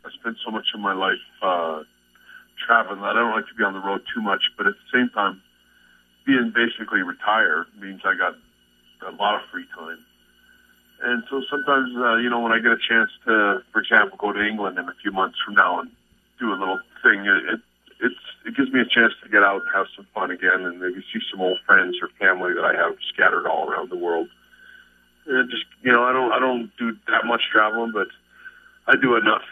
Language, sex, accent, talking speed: English, male, American, 225 wpm